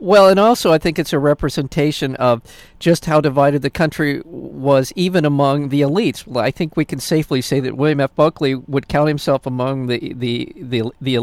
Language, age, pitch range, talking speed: English, 50-69, 120-150 Hz, 190 wpm